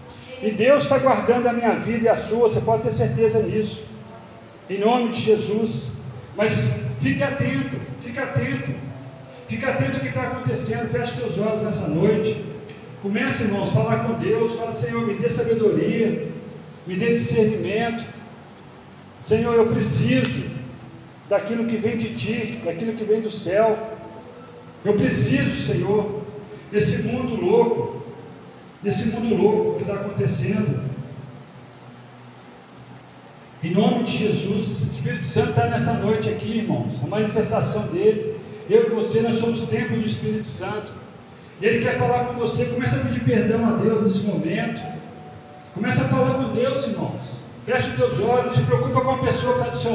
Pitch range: 140-230 Hz